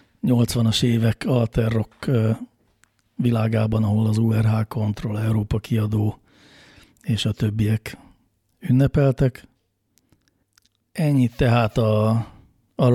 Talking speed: 80 wpm